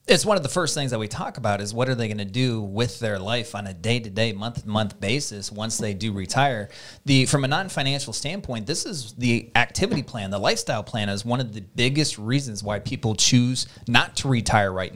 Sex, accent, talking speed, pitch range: male, American, 220 wpm, 100-130 Hz